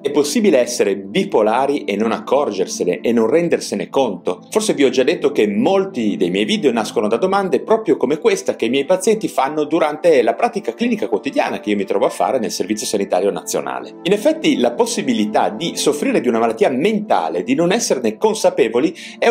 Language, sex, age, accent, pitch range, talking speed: Italian, male, 40-59, native, 165-255 Hz, 195 wpm